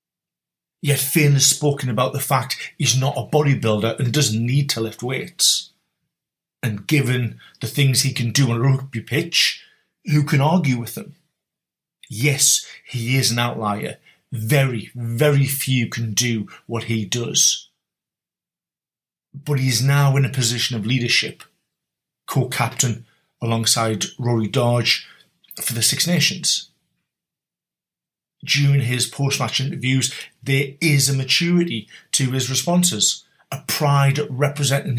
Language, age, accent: English, 30-49, British